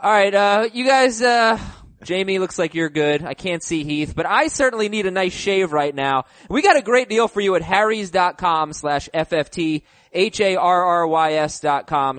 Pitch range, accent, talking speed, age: 155-215 Hz, American, 175 wpm, 20-39